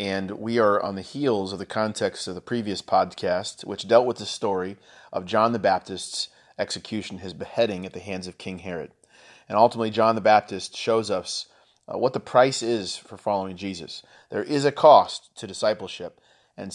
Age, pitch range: 30-49, 95-115 Hz